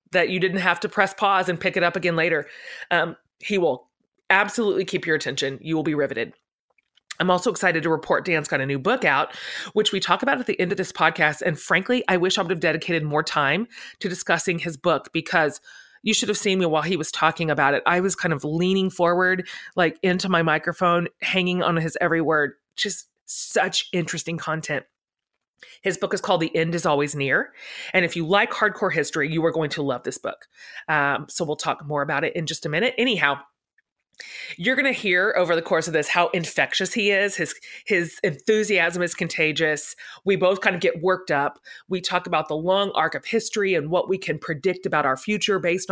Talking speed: 215 wpm